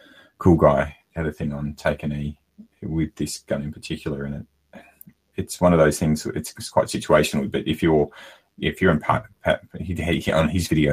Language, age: English, 30-49